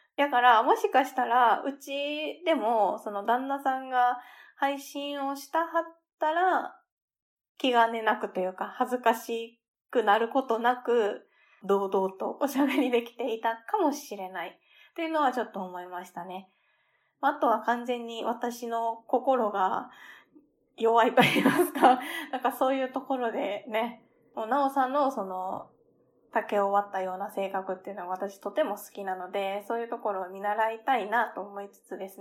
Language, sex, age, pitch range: Japanese, female, 20-39, 200-275 Hz